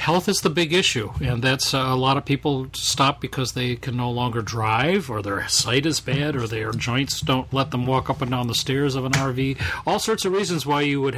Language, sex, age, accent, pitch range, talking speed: English, male, 40-59, American, 125-155 Hz, 245 wpm